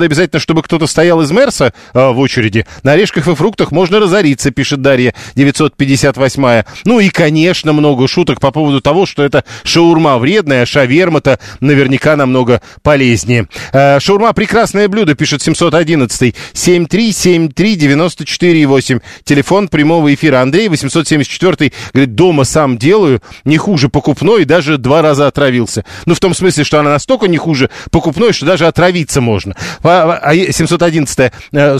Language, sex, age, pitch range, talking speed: Russian, male, 40-59, 130-170 Hz, 140 wpm